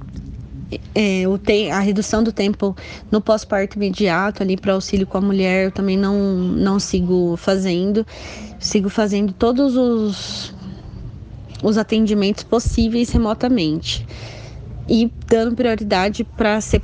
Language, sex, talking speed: Portuguese, female, 120 wpm